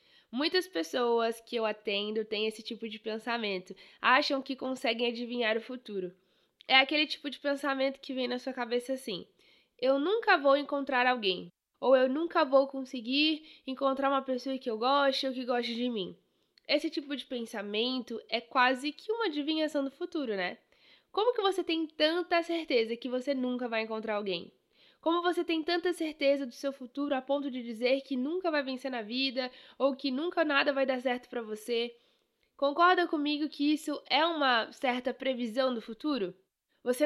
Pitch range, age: 240-290 Hz, 10-29